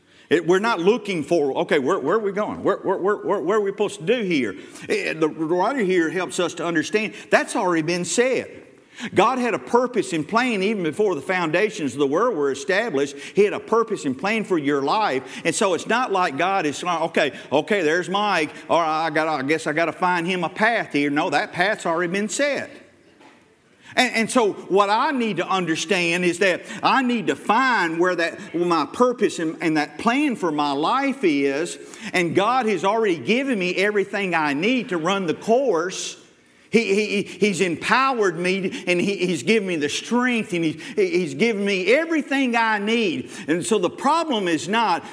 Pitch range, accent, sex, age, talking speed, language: 170-225 Hz, American, male, 50-69, 205 wpm, English